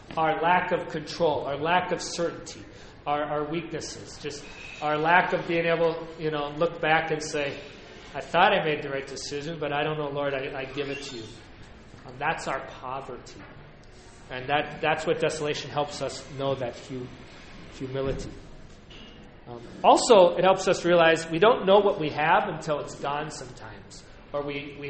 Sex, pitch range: male, 135-175 Hz